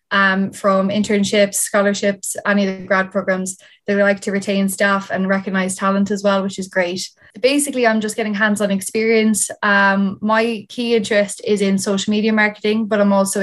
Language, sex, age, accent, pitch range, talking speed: English, female, 20-39, Irish, 195-215 Hz, 180 wpm